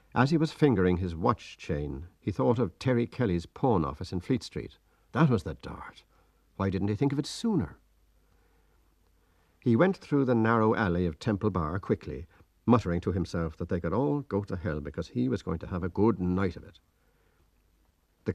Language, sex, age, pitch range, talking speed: English, male, 60-79, 85-115 Hz, 195 wpm